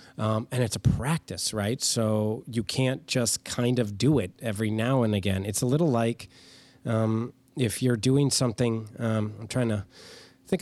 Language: English